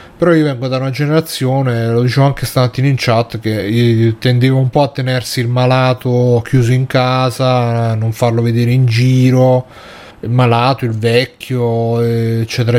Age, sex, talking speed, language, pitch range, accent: 30-49, male, 165 wpm, Italian, 120-135 Hz, native